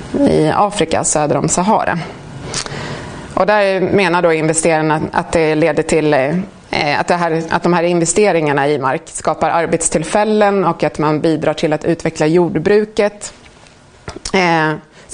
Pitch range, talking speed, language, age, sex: 155-180 Hz, 130 wpm, Swedish, 30-49, female